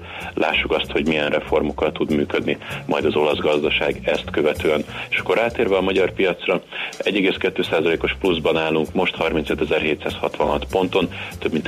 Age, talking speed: 30-49, 145 wpm